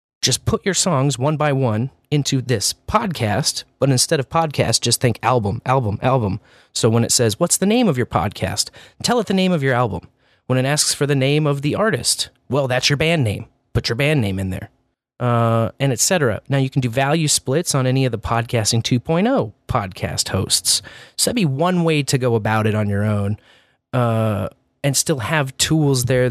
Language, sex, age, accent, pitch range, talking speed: English, male, 30-49, American, 115-140 Hz, 210 wpm